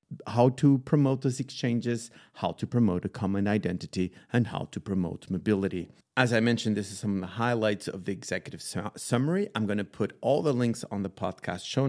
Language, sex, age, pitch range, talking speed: English, male, 40-59, 95-125 Hz, 200 wpm